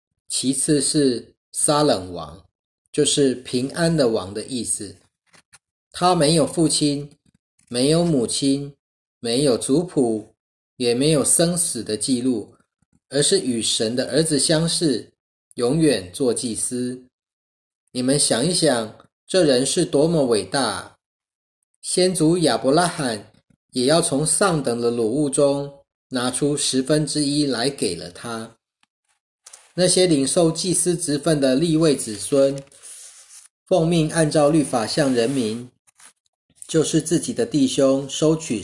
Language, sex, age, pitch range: Chinese, male, 30-49, 115-160 Hz